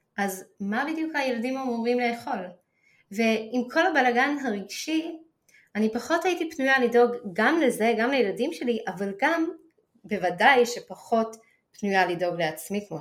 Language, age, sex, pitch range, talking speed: Hebrew, 20-39, female, 195-260 Hz, 130 wpm